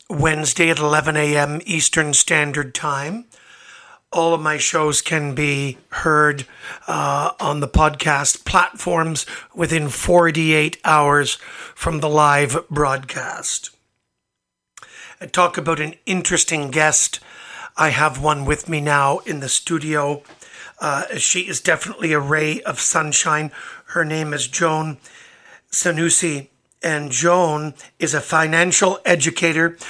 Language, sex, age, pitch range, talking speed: English, male, 50-69, 150-170 Hz, 120 wpm